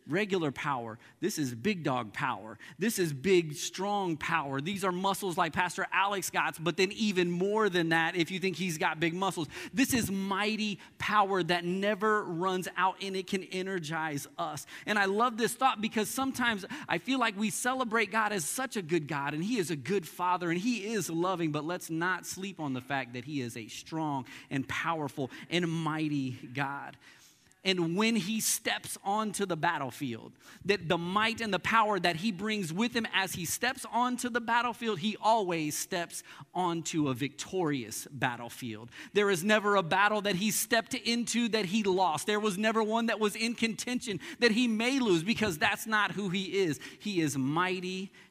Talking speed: 190 wpm